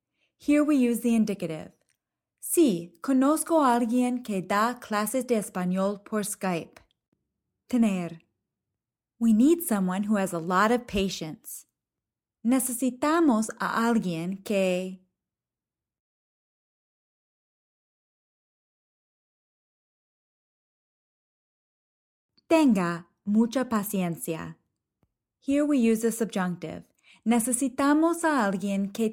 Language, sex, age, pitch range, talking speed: English, female, 20-39, 180-245 Hz, 85 wpm